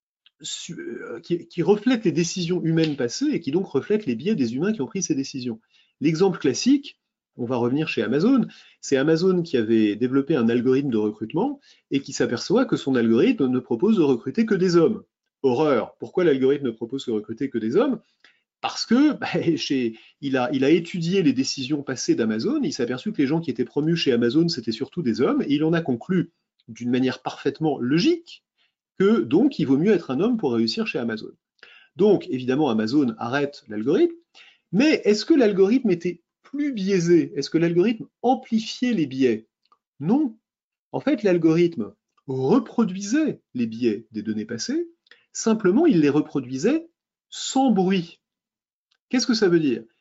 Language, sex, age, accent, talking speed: French, male, 30-49, French, 175 wpm